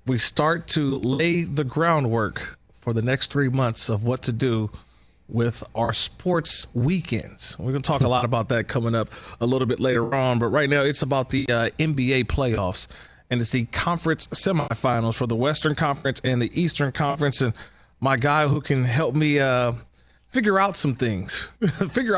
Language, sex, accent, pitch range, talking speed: English, male, American, 120-165 Hz, 185 wpm